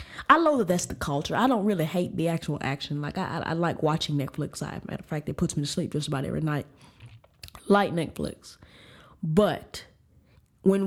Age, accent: 20-39, American